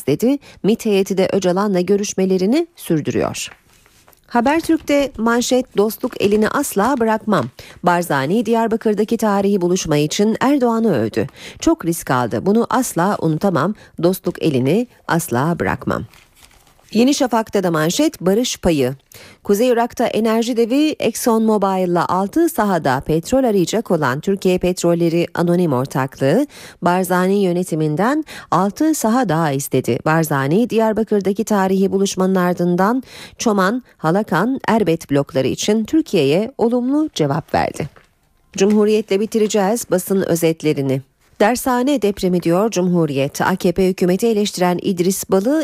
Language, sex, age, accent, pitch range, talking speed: Turkish, female, 40-59, native, 165-225 Hz, 110 wpm